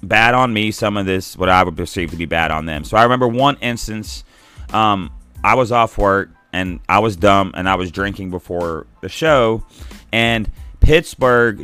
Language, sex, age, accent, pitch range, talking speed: English, male, 30-49, American, 90-115 Hz, 195 wpm